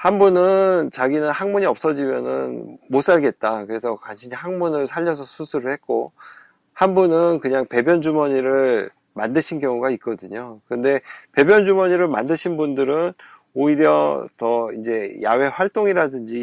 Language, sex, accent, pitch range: Korean, male, native, 125-170 Hz